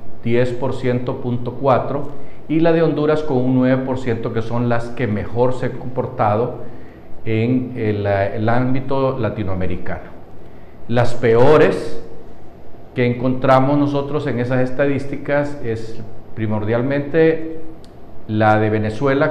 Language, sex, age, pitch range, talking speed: Spanish, male, 50-69, 115-145 Hz, 105 wpm